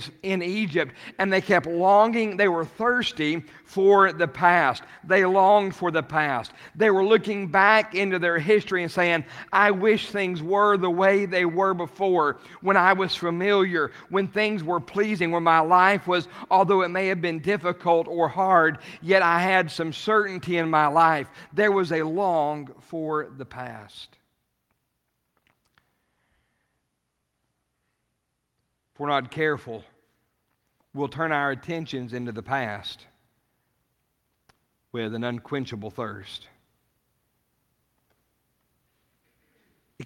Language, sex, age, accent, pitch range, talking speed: English, male, 50-69, American, 125-185 Hz, 130 wpm